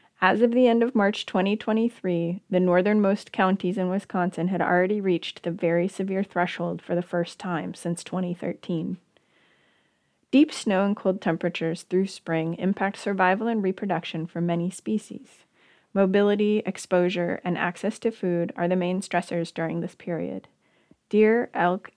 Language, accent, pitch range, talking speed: English, American, 170-195 Hz, 145 wpm